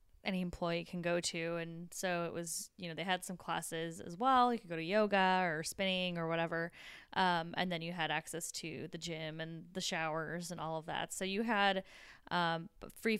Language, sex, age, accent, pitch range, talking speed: English, female, 20-39, American, 165-205 Hz, 215 wpm